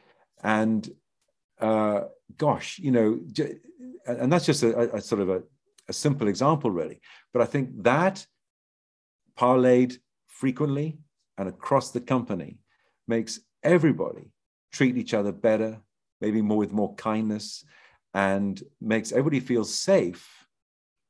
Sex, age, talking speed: male, 50-69, 120 wpm